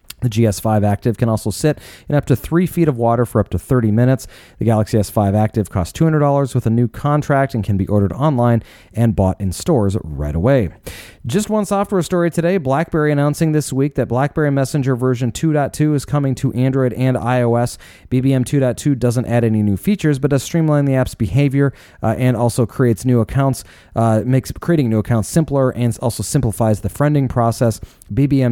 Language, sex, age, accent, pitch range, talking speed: English, male, 30-49, American, 110-140 Hz, 190 wpm